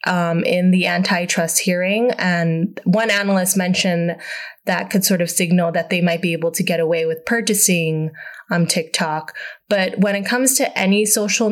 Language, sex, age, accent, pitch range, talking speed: English, female, 20-39, American, 170-195 Hz, 170 wpm